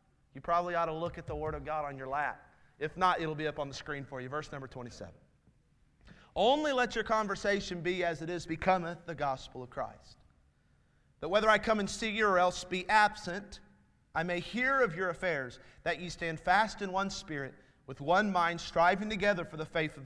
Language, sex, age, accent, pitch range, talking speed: English, male, 30-49, American, 150-195 Hz, 215 wpm